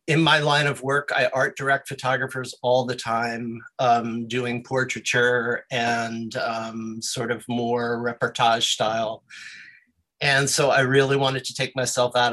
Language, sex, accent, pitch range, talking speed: English, male, American, 120-135 Hz, 150 wpm